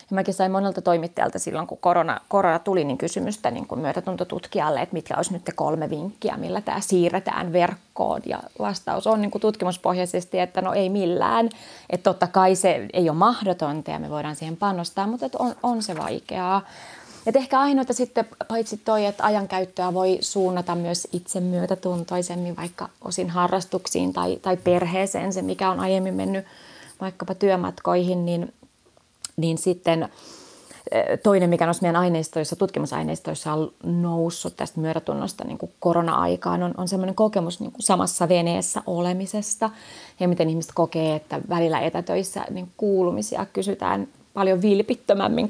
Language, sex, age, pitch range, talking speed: Finnish, female, 20-39, 170-200 Hz, 150 wpm